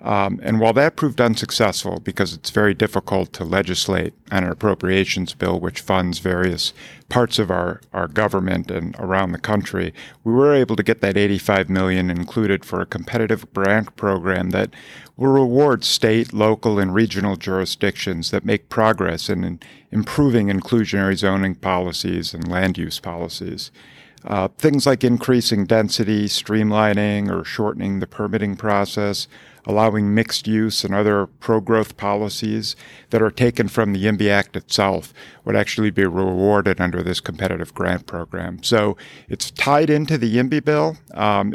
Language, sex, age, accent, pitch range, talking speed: English, male, 50-69, American, 95-110 Hz, 150 wpm